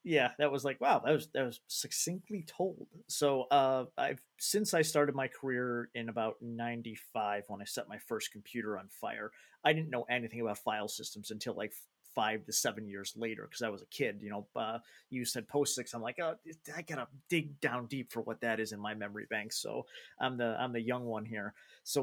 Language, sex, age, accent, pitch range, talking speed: English, male, 30-49, American, 110-135 Hz, 220 wpm